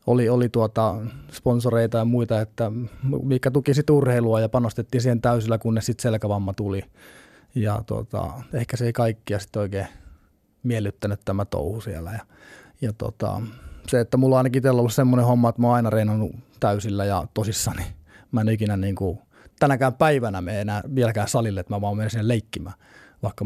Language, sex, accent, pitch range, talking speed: Finnish, male, native, 105-130 Hz, 170 wpm